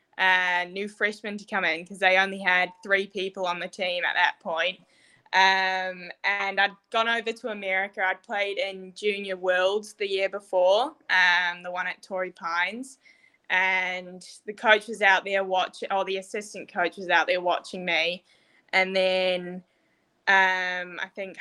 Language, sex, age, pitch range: English, female, 10-29, 180-200 Hz